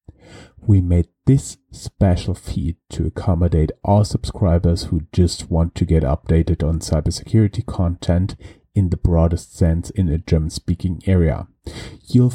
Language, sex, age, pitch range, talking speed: English, male, 30-49, 80-100 Hz, 130 wpm